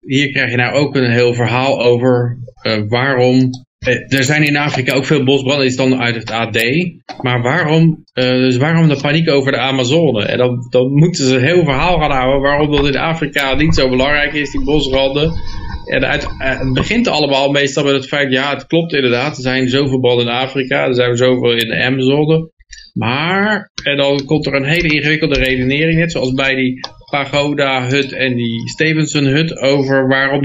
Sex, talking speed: male, 190 wpm